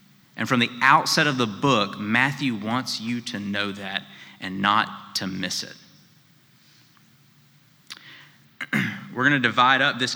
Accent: American